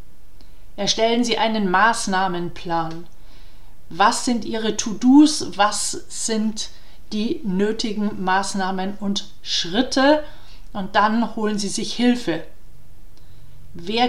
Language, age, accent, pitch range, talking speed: German, 40-59, German, 195-235 Hz, 95 wpm